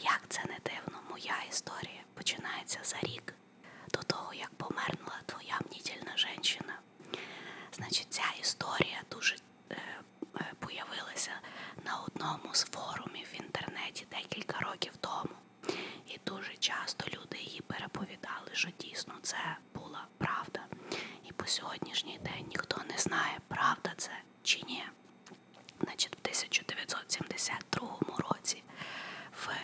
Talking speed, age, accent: 115 wpm, 20-39, native